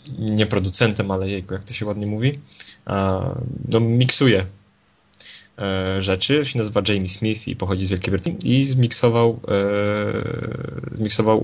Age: 20-39